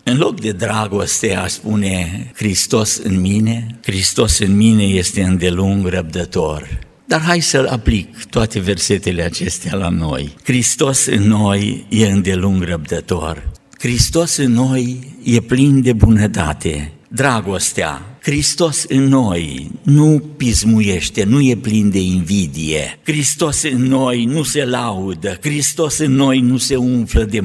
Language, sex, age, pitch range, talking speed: Romanian, male, 60-79, 100-150 Hz, 130 wpm